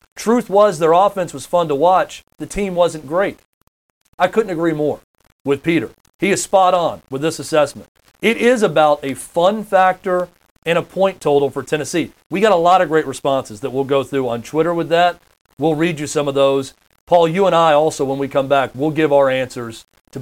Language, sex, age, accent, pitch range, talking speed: English, male, 40-59, American, 135-180 Hz, 215 wpm